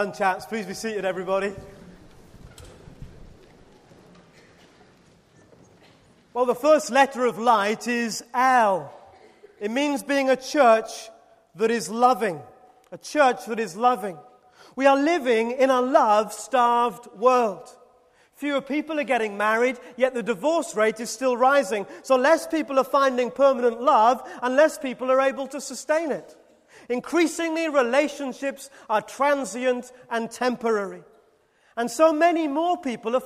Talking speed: 130 wpm